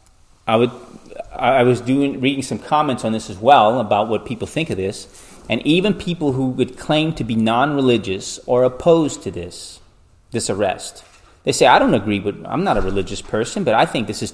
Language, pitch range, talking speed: English, 100-125 Hz, 205 wpm